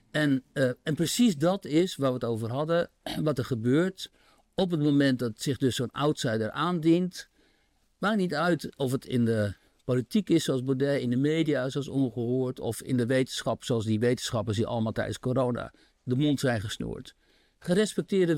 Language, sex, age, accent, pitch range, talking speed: Dutch, male, 60-79, Dutch, 125-170 Hz, 180 wpm